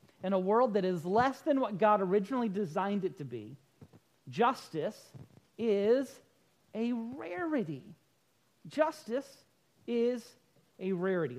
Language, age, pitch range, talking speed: English, 40-59, 160-245 Hz, 115 wpm